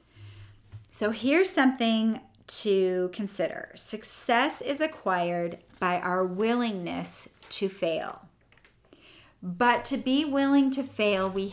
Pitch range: 180-235 Hz